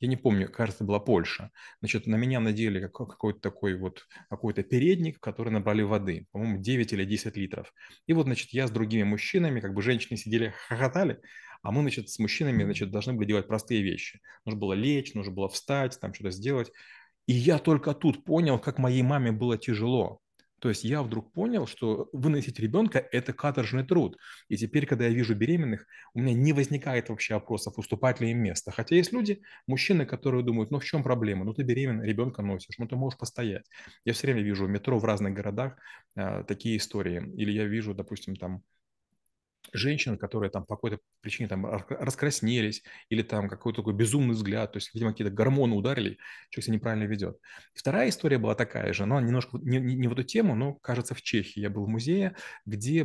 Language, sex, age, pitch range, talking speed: Russian, male, 30-49, 105-135 Hz, 195 wpm